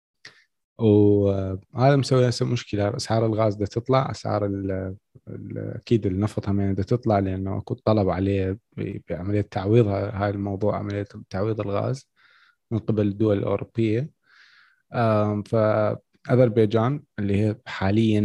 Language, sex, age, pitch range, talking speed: Arabic, male, 20-39, 100-120 Hz, 110 wpm